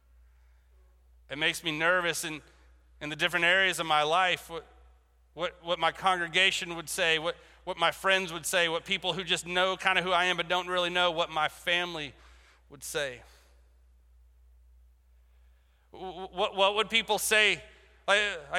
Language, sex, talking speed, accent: English, male, 160 wpm, American